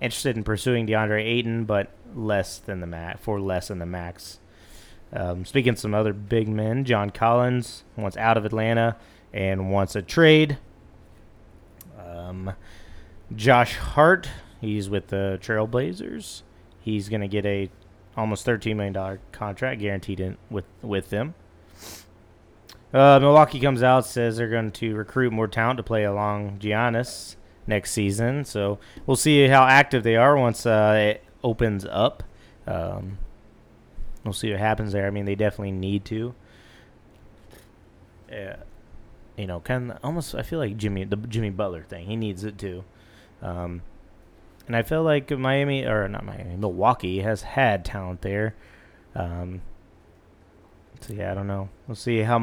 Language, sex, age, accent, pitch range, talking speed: English, male, 30-49, American, 95-115 Hz, 155 wpm